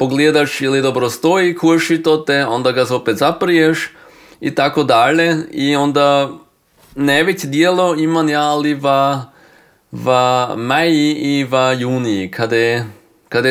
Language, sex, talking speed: Croatian, male, 120 wpm